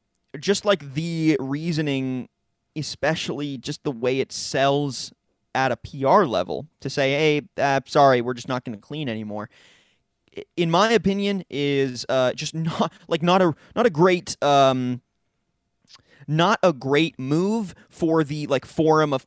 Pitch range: 125-160 Hz